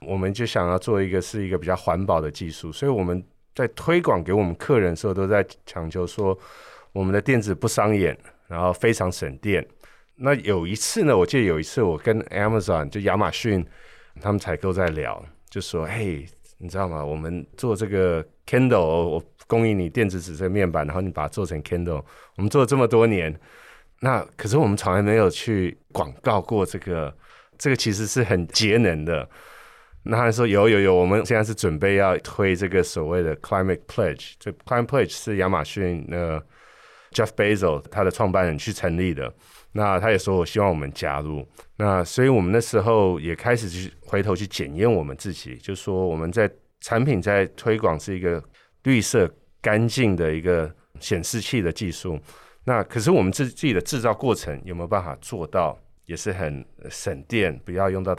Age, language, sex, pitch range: 20-39, Chinese, male, 85-110 Hz